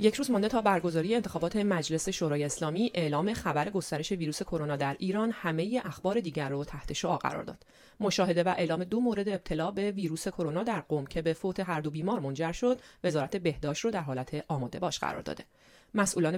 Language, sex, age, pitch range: Persian, female, 30-49, 155-210 Hz